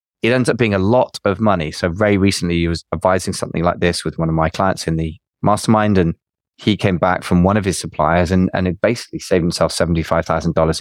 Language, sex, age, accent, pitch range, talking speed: English, male, 30-49, British, 85-105 Hz, 230 wpm